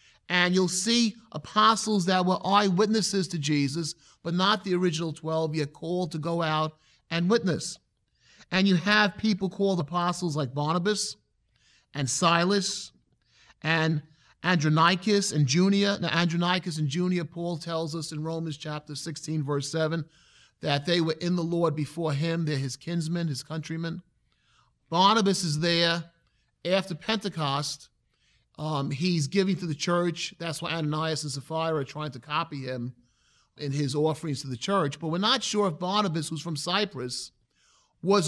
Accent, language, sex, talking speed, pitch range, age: American, English, male, 155 wpm, 155-190 Hz, 30-49